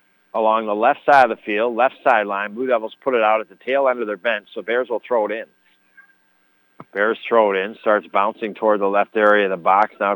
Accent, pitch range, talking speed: American, 110-130 Hz, 240 wpm